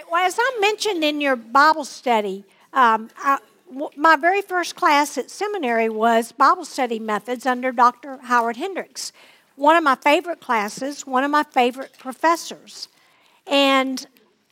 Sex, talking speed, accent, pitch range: female, 135 wpm, American, 250-335 Hz